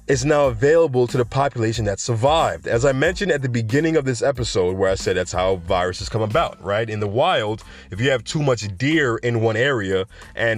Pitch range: 110-135 Hz